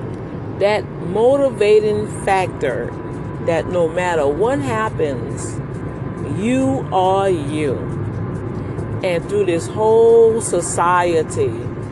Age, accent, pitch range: 40-59, American, 135-210 Hz